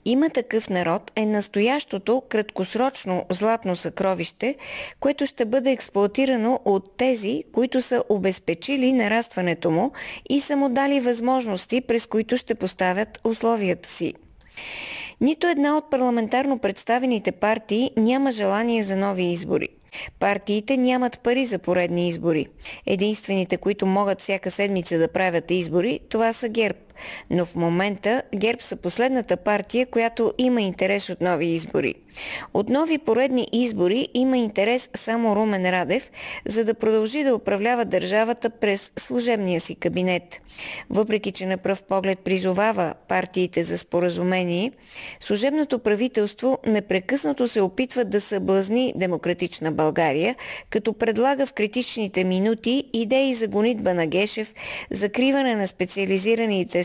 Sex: female